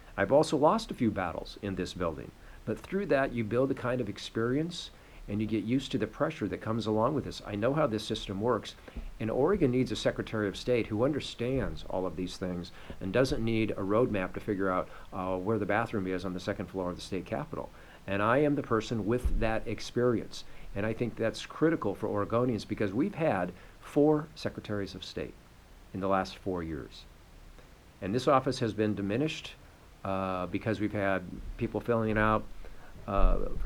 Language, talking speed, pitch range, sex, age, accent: English, 200 wpm, 100-125 Hz, male, 50-69, American